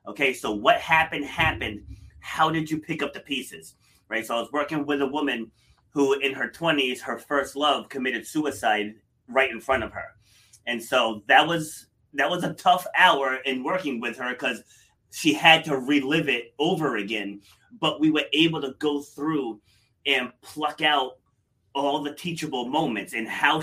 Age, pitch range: 30-49, 120-155 Hz